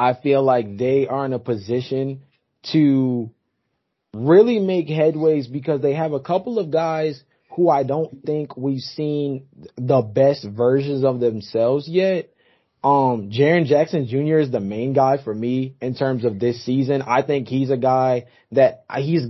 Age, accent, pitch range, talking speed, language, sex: 20-39, American, 125-155 Hz, 165 wpm, English, male